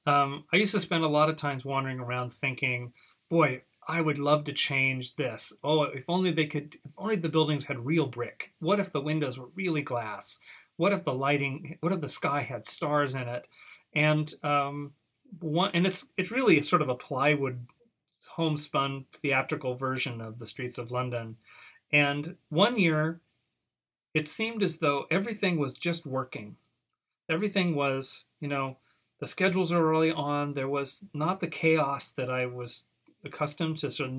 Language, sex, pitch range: English, male, 130-160 Hz